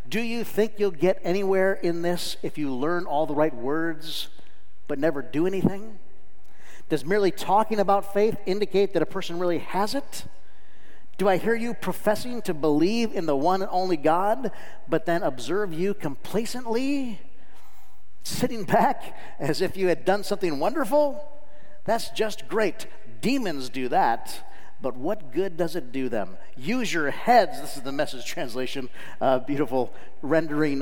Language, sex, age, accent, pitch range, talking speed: English, male, 50-69, American, 140-200 Hz, 160 wpm